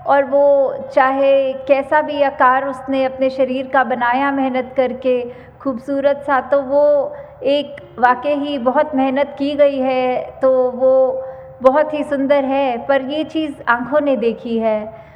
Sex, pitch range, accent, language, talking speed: female, 260-290 Hz, native, Hindi, 150 wpm